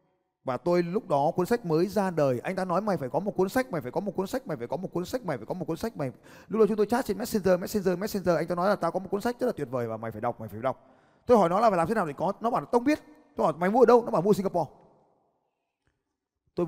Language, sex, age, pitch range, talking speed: Vietnamese, male, 20-39, 135-185 Hz, 355 wpm